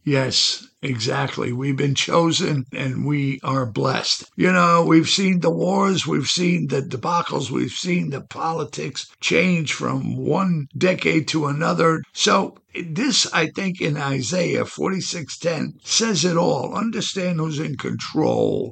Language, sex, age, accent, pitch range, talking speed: English, male, 60-79, American, 140-175 Hz, 140 wpm